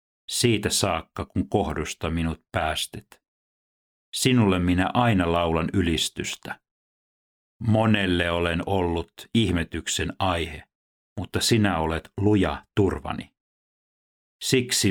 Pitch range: 80-105 Hz